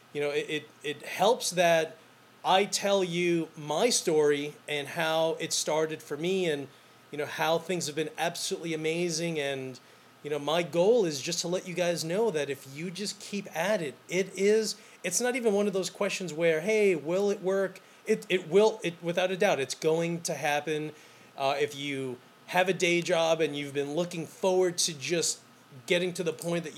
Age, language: 30-49, English